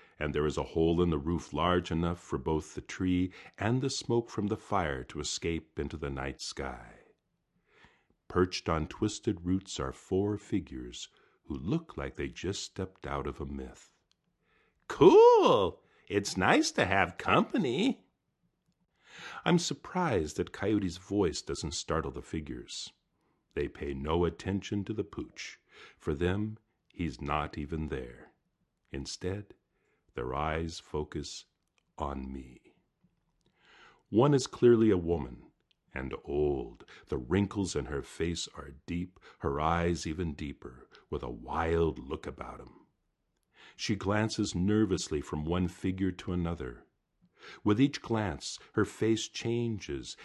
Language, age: English, 50-69